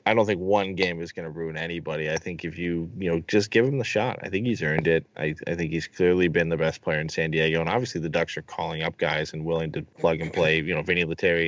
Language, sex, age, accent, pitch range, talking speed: English, male, 20-39, American, 80-95 Hz, 295 wpm